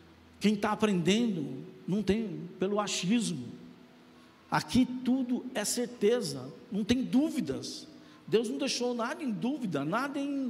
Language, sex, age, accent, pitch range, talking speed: Portuguese, male, 60-79, Brazilian, 160-255 Hz, 120 wpm